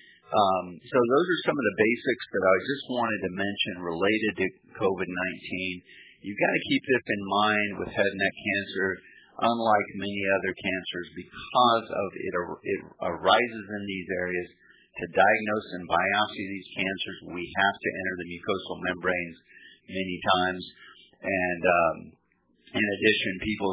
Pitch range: 90-105 Hz